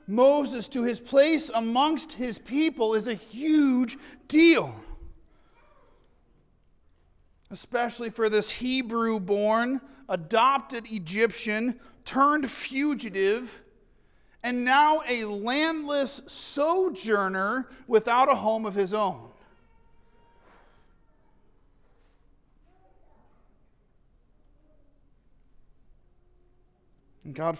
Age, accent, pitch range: 40-59, American, 195-255 Hz